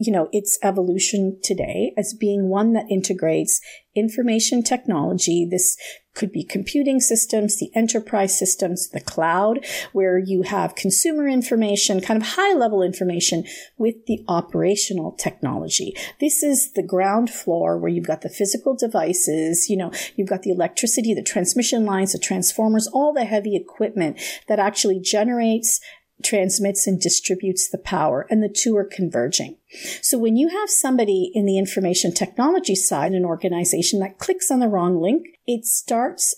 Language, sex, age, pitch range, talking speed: English, female, 40-59, 185-230 Hz, 155 wpm